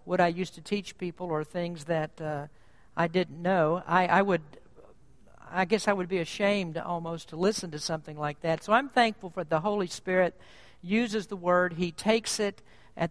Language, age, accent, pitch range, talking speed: English, 50-69, American, 160-195 Hz, 190 wpm